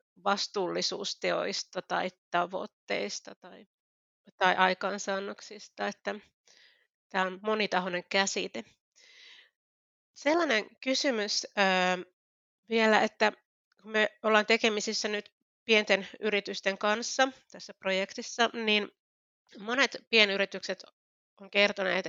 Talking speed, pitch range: 80 wpm, 180-210 Hz